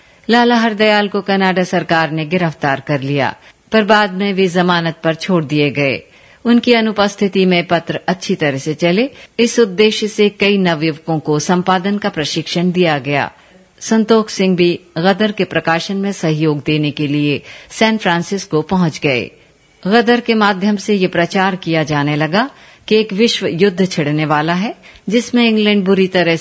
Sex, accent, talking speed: female, native, 165 wpm